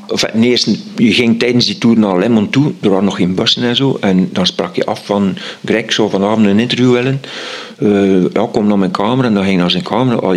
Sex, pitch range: male, 100-125 Hz